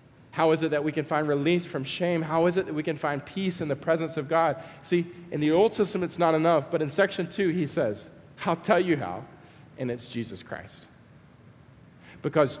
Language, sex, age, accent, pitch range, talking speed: English, male, 40-59, American, 150-195 Hz, 220 wpm